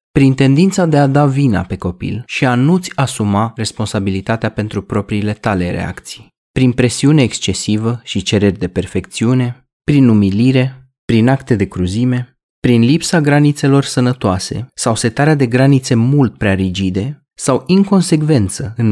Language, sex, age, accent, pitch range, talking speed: Romanian, male, 20-39, native, 95-135 Hz, 140 wpm